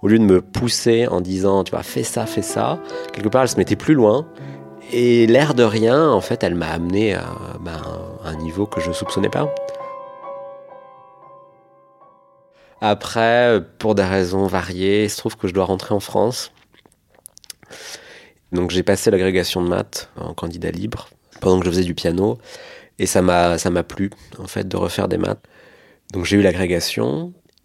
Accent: French